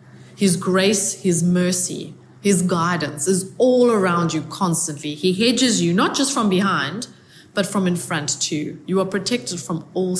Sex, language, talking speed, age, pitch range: female, English, 165 wpm, 20-39, 165-220 Hz